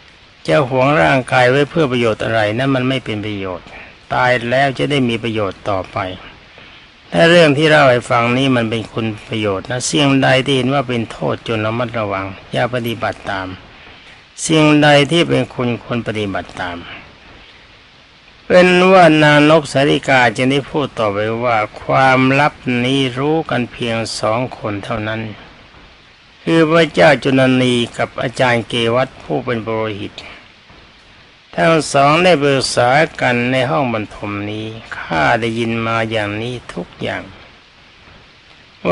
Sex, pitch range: male, 115-140 Hz